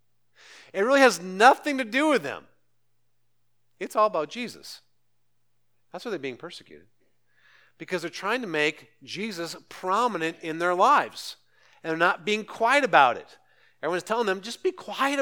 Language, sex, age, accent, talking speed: English, male, 50-69, American, 160 wpm